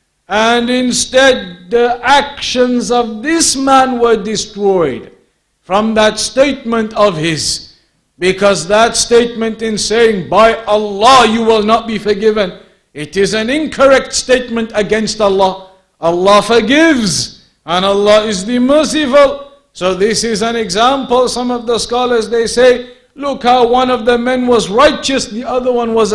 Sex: male